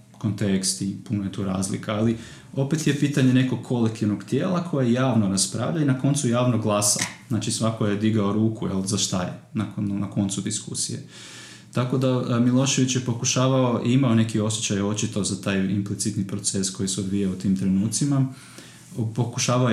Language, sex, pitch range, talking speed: Croatian, male, 100-120 Hz, 160 wpm